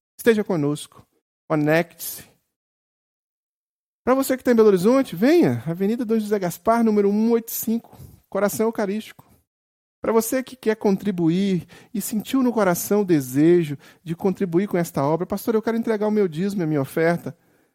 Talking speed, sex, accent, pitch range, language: 150 wpm, male, Brazilian, 155-215 Hz, Portuguese